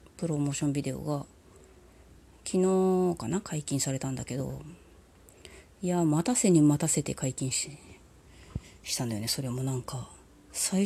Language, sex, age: Japanese, female, 30-49